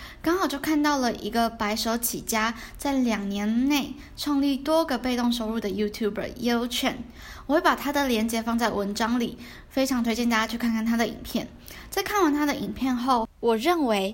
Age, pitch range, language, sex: 10-29, 210-275 Hz, Chinese, female